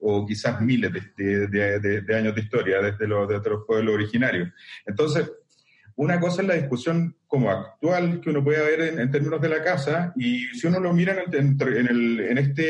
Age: 40-59